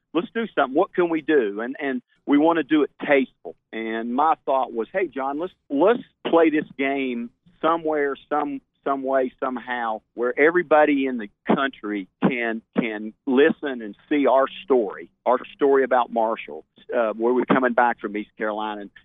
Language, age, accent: English, 50-69, American